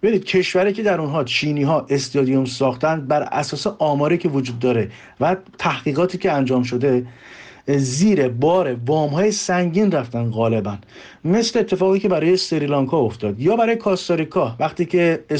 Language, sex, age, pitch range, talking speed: Persian, male, 50-69, 135-175 Hz, 150 wpm